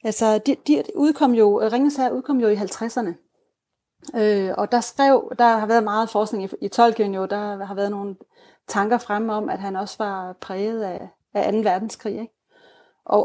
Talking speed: 170 wpm